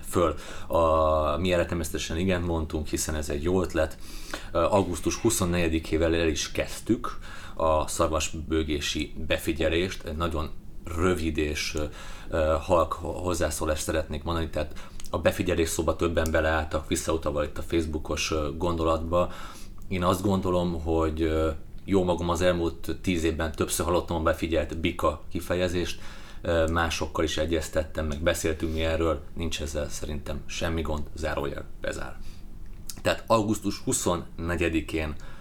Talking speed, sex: 120 wpm, male